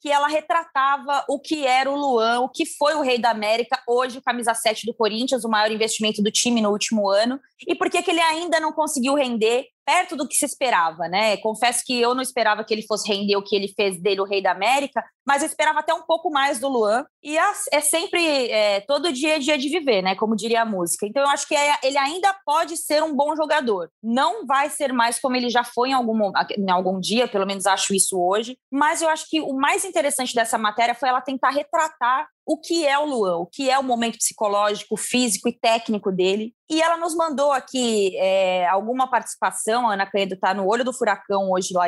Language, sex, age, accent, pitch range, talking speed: Portuguese, female, 20-39, Brazilian, 215-295 Hz, 225 wpm